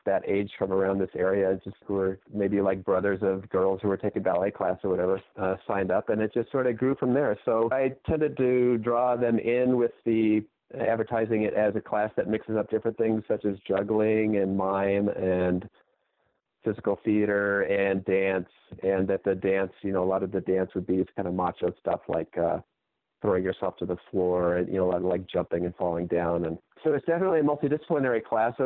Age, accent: 40-59, American